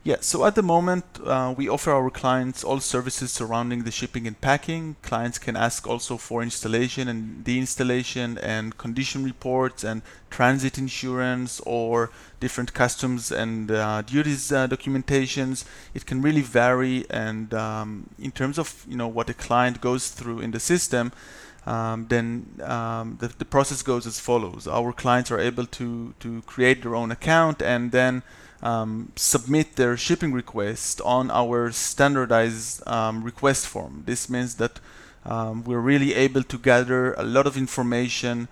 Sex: male